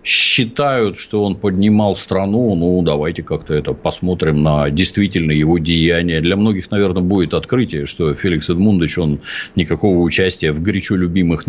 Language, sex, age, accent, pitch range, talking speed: Russian, male, 50-69, native, 80-105 Hz, 145 wpm